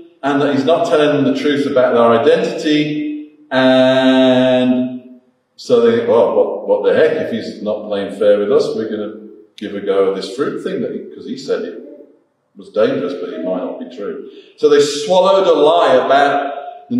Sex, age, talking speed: male, 40-59, 200 wpm